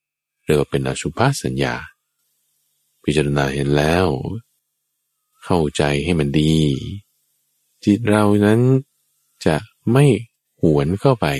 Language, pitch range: Thai, 70-95 Hz